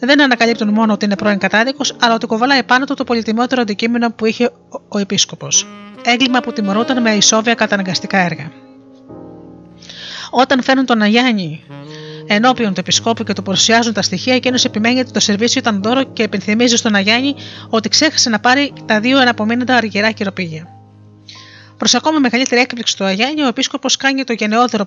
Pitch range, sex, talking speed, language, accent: 195-245 Hz, female, 170 wpm, Greek, native